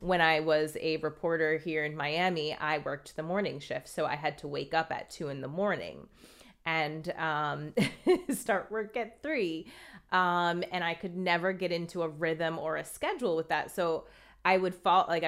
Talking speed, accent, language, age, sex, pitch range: 195 wpm, American, English, 30-49, female, 155-195 Hz